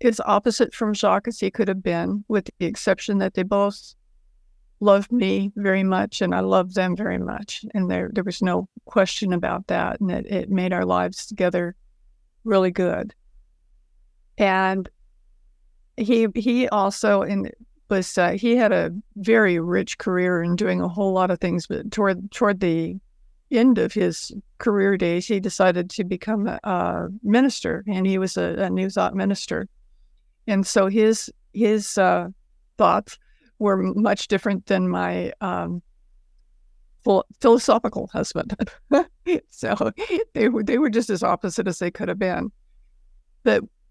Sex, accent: female, American